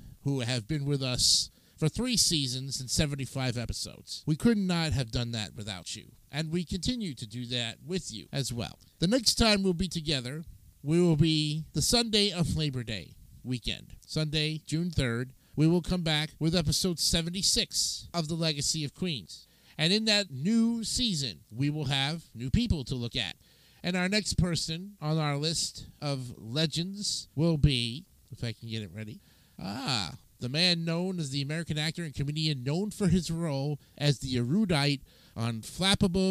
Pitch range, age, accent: 130-175 Hz, 50-69, American